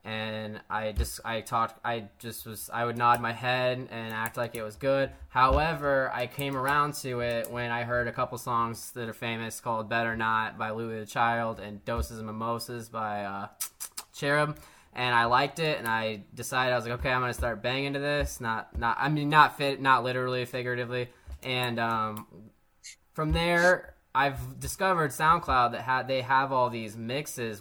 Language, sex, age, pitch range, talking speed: English, male, 10-29, 110-130 Hz, 190 wpm